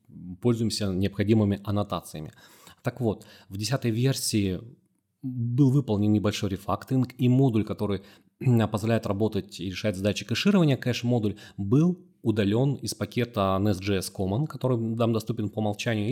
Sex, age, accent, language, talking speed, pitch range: male, 30-49, native, Russian, 125 wpm, 100-120 Hz